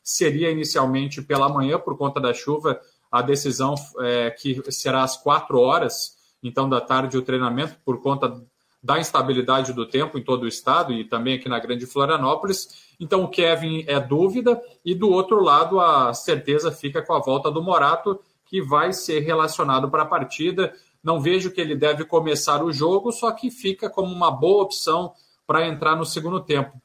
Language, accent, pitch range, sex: Portuguese, Brazilian, 135-175 Hz, male